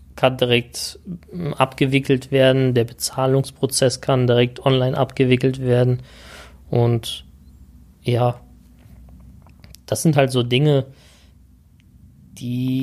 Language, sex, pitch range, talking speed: German, male, 125-145 Hz, 90 wpm